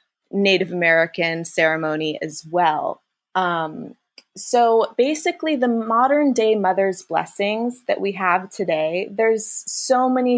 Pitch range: 170-215 Hz